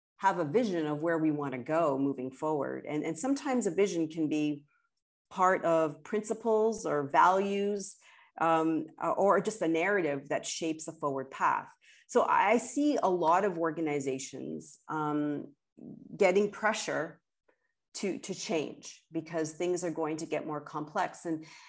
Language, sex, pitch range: English, female, 150-205 Hz